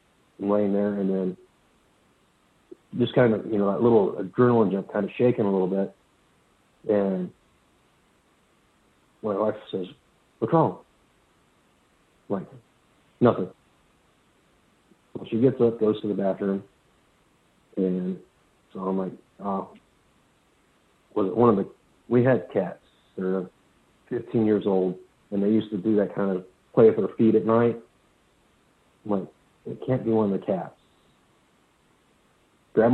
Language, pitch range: English, 95-115 Hz